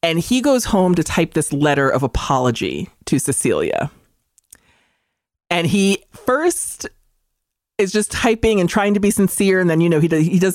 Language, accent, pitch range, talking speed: English, American, 160-230 Hz, 165 wpm